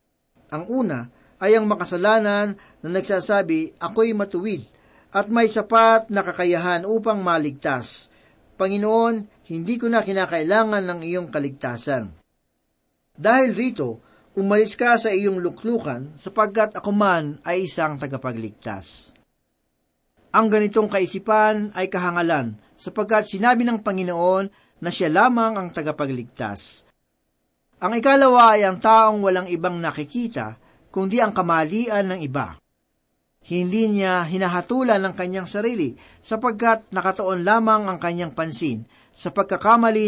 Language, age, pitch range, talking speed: Filipino, 40-59, 170-220 Hz, 115 wpm